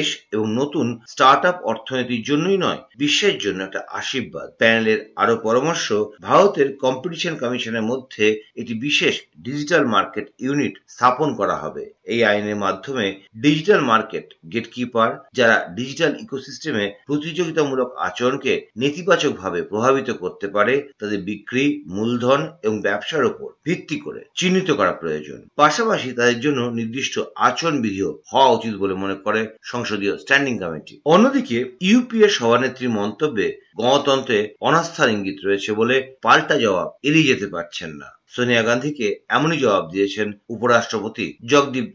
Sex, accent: male, native